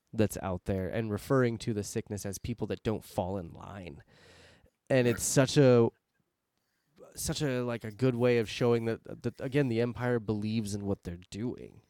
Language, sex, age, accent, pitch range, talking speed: English, male, 20-39, American, 105-130 Hz, 185 wpm